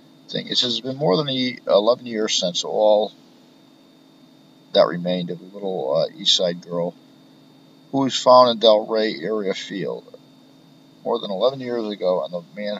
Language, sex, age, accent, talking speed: English, male, 50-69, American, 160 wpm